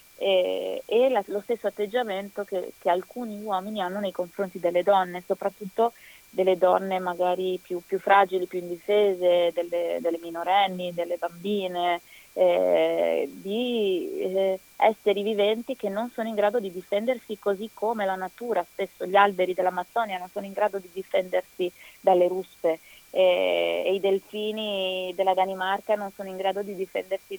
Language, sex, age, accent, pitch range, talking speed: Italian, female, 20-39, native, 180-205 Hz, 150 wpm